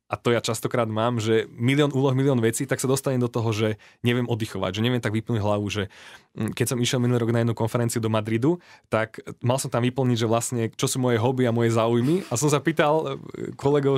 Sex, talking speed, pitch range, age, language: male, 225 wpm, 110-135 Hz, 20-39, Slovak